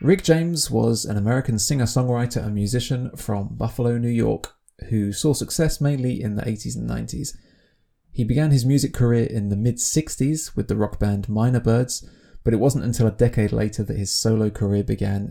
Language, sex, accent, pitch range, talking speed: English, male, British, 105-120 Hz, 185 wpm